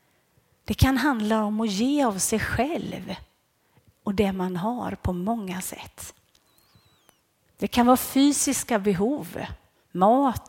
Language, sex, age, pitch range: Swedish, female, 40-59, 220-300 Hz